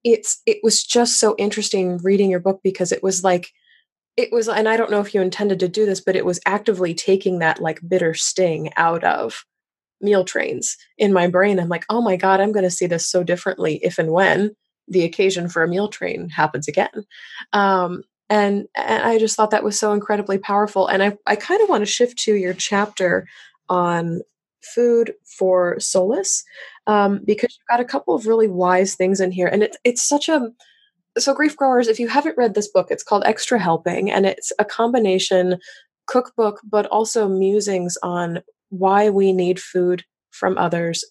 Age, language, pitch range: 20-39, English, 180-225 Hz